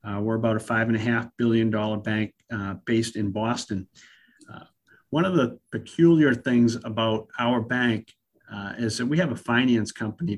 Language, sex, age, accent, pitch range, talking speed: English, male, 50-69, American, 105-120 Hz, 160 wpm